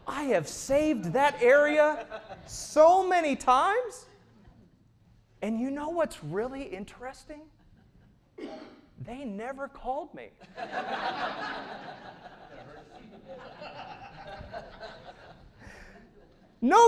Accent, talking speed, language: American, 70 wpm, English